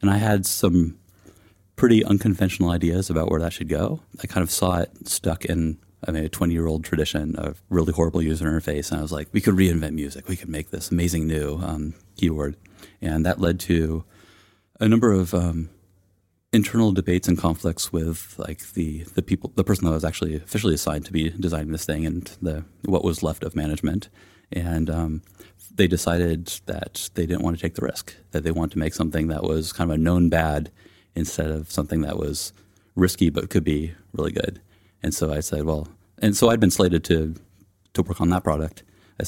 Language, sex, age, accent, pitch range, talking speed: English, male, 30-49, American, 80-95 Hz, 210 wpm